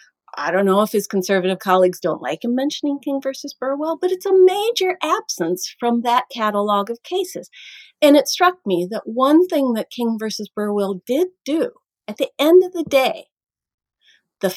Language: English